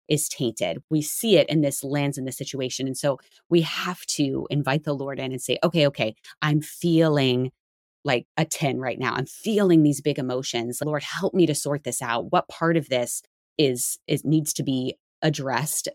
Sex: female